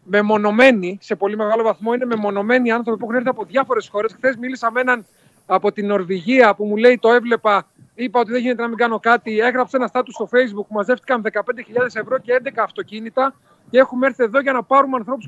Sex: male